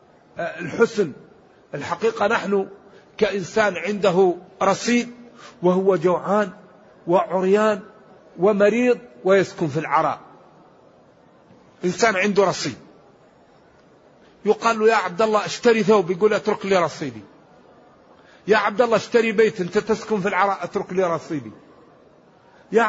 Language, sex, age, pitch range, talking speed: Arabic, male, 50-69, 185-225 Hz, 105 wpm